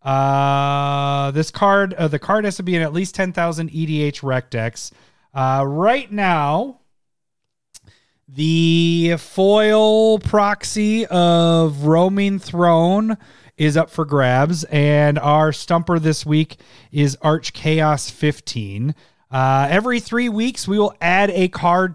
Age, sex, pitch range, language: 30-49, male, 150-200 Hz, English